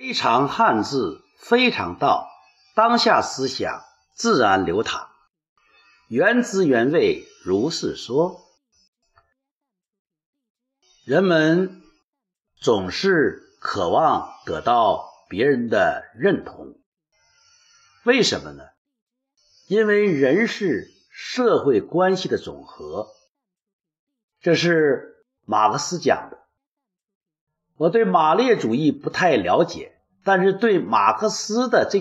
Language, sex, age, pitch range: Chinese, male, 50-69, 170-255 Hz